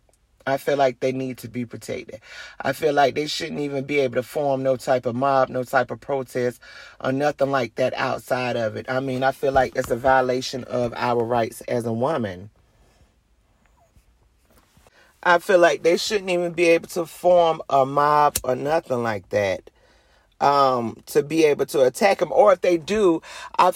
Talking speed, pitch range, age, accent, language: 190 wpm, 135-215 Hz, 30-49, American, English